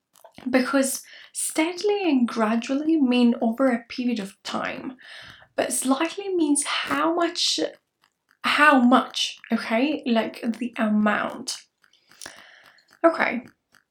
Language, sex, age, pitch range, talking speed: English, female, 10-29, 220-285 Hz, 95 wpm